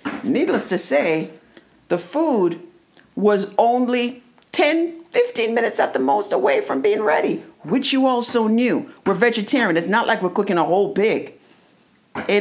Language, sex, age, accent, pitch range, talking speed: English, female, 50-69, American, 210-280 Hz, 155 wpm